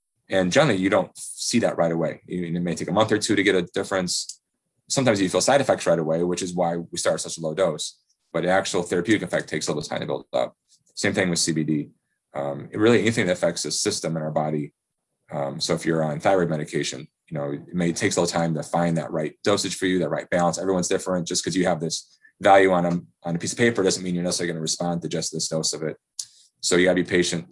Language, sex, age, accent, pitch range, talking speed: English, male, 30-49, American, 85-95 Hz, 260 wpm